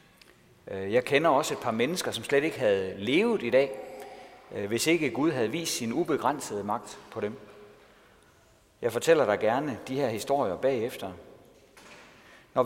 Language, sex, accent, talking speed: Danish, male, native, 150 wpm